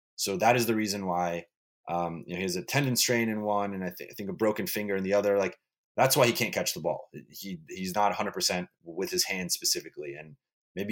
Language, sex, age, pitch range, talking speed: English, male, 20-39, 95-115 Hz, 245 wpm